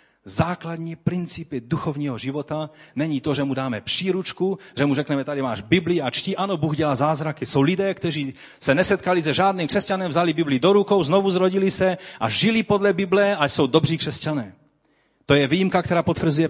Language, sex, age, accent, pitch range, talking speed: Czech, male, 40-59, native, 145-190 Hz, 180 wpm